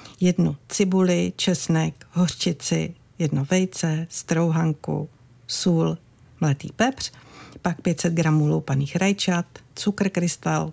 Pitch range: 145-185 Hz